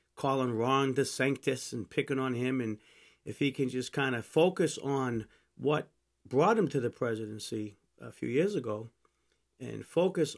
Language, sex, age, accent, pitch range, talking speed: English, male, 40-59, American, 125-155 Hz, 170 wpm